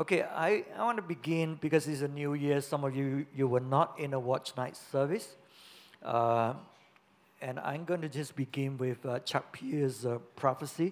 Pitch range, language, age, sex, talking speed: 145-200 Hz, English, 60-79, male, 185 wpm